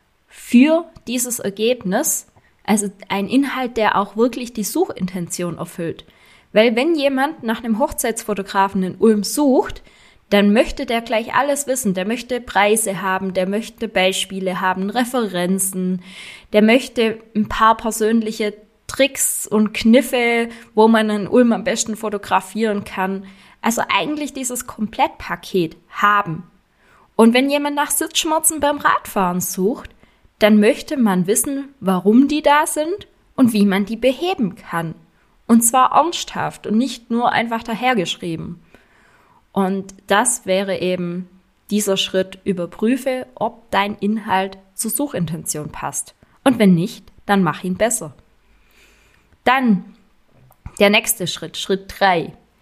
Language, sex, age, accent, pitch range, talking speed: German, female, 20-39, German, 190-245 Hz, 130 wpm